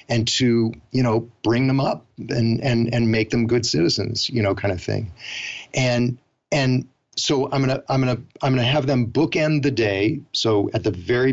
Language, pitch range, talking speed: English, 115-130 Hz, 210 wpm